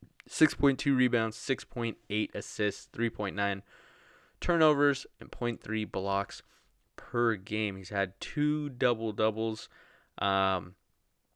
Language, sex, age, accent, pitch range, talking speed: English, male, 20-39, American, 95-115 Hz, 90 wpm